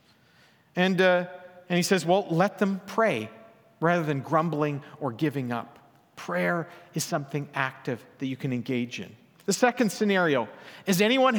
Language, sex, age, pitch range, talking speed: English, male, 50-69, 155-210 Hz, 155 wpm